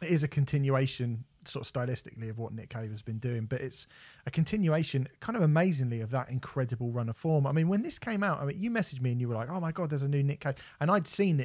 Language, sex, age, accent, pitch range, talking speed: English, male, 30-49, British, 115-150 Hz, 285 wpm